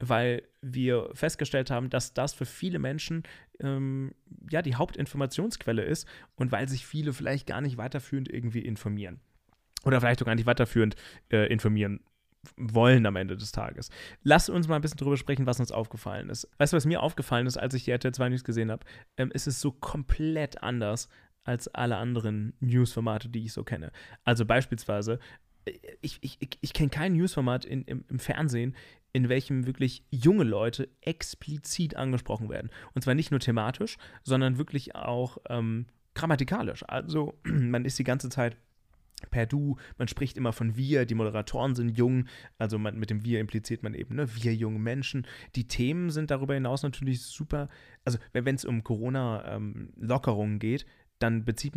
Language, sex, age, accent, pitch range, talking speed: German, male, 30-49, German, 115-140 Hz, 170 wpm